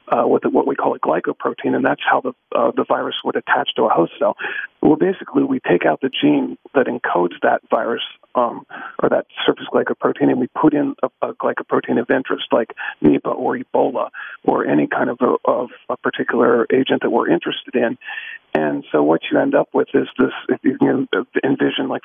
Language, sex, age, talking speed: English, male, 40-59, 200 wpm